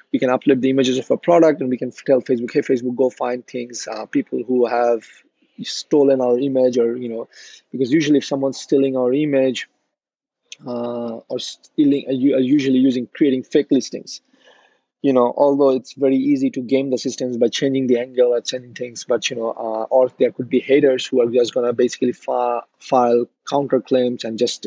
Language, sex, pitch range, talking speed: English, male, 125-140 Hz, 200 wpm